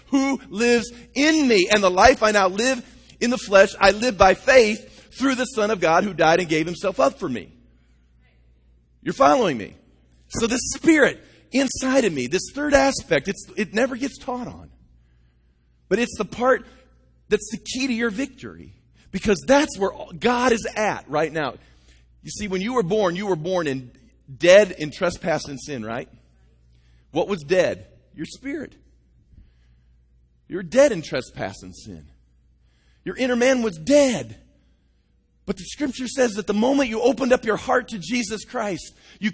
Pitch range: 175-255 Hz